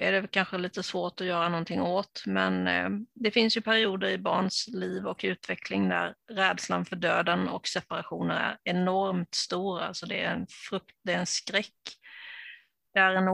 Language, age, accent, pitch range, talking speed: Swedish, 30-49, native, 170-210 Hz, 180 wpm